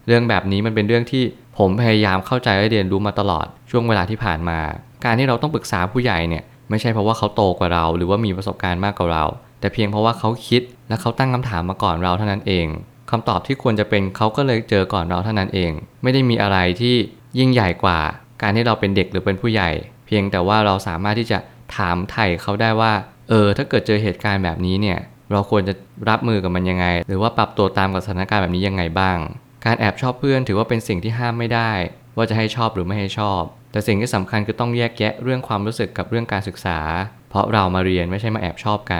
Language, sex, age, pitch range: Thai, male, 20-39, 95-115 Hz